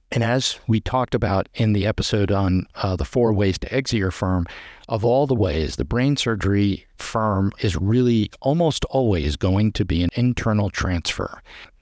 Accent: American